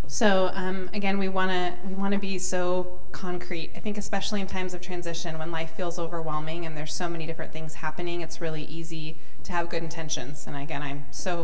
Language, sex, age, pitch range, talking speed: English, female, 20-39, 160-180 Hz, 205 wpm